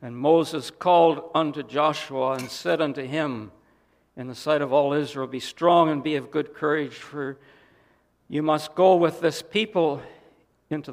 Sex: male